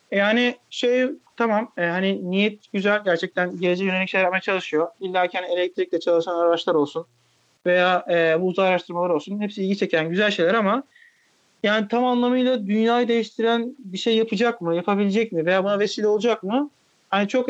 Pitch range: 185-220 Hz